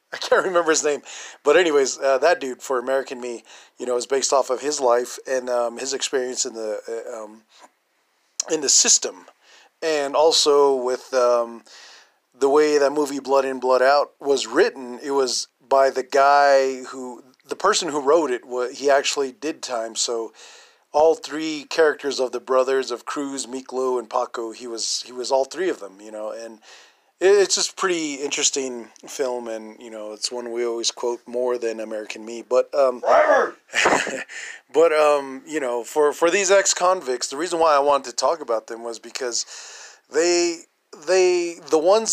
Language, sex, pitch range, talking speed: English, male, 125-155 Hz, 180 wpm